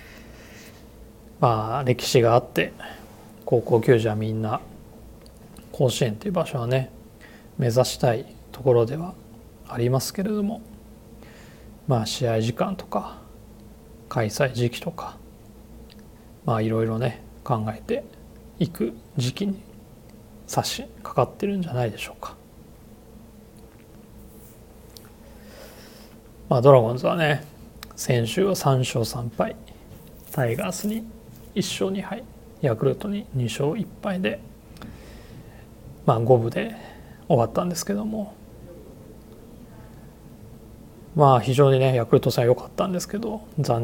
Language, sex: Japanese, male